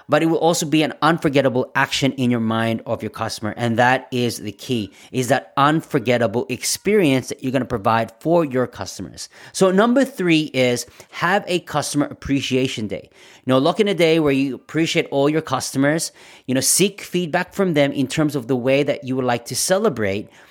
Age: 30-49